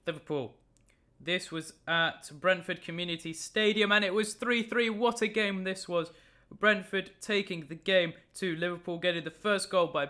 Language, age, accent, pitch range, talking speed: English, 20-39, British, 155-185 Hz, 160 wpm